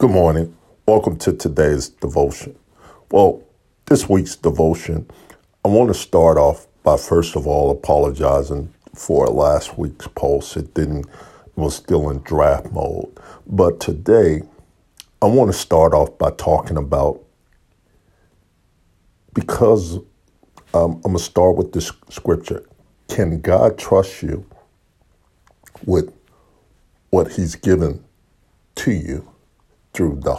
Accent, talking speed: American, 125 wpm